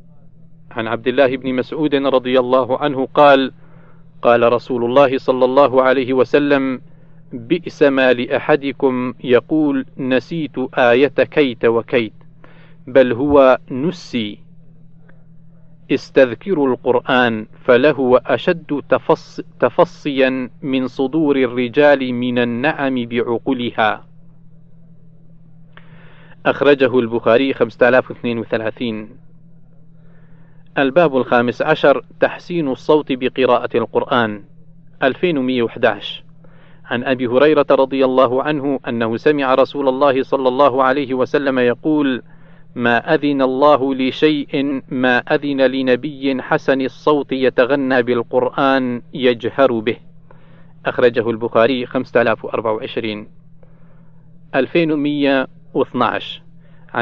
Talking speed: 85 wpm